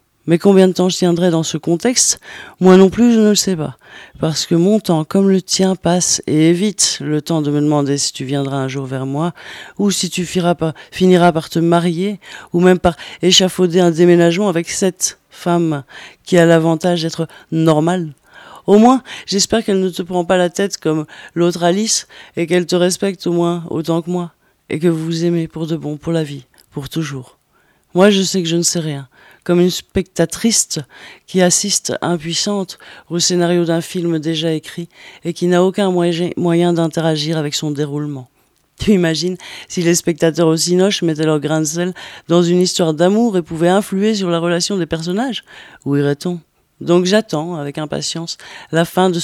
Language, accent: French, French